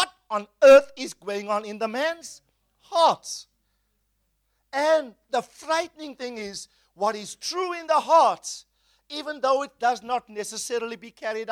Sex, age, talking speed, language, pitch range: male, 50-69, 145 wpm, English, 180-285 Hz